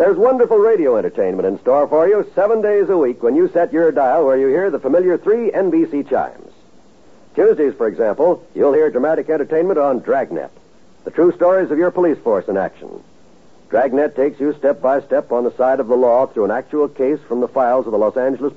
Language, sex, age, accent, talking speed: English, male, 70-89, American, 215 wpm